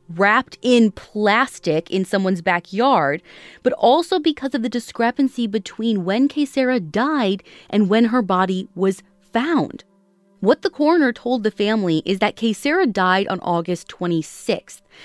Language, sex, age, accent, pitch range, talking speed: English, female, 20-39, American, 185-255 Hz, 140 wpm